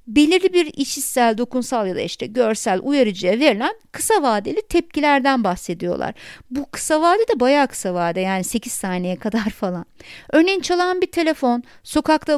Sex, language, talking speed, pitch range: female, Turkish, 150 wpm, 215-315 Hz